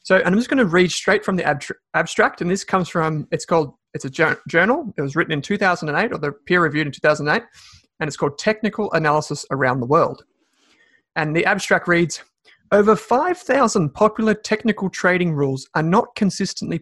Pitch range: 155-200 Hz